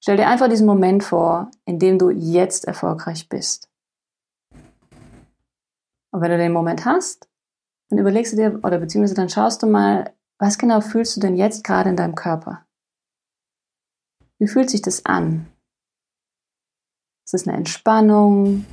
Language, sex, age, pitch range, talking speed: German, female, 30-49, 170-210 Hz, 150 wpm